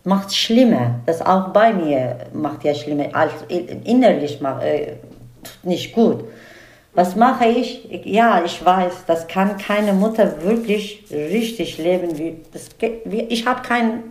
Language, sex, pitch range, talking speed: German, female, 165-215 Hz, 140 wpm